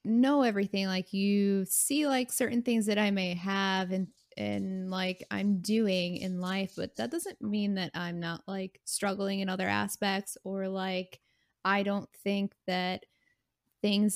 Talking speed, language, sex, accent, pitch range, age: 160 wpm, English, female, American, 180-210 Hz, 20-39